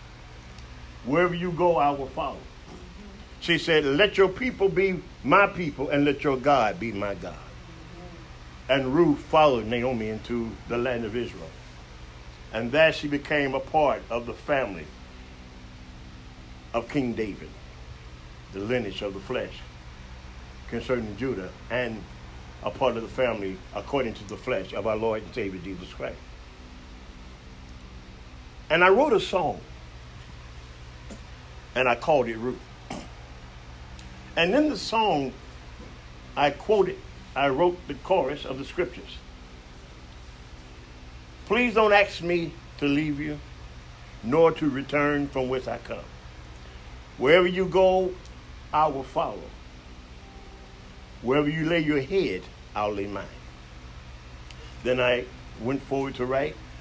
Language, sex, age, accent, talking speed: English, male, 50-69, American, 130 wpm